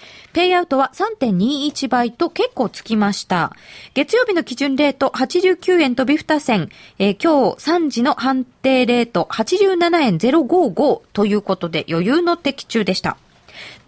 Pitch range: 200-310 Hz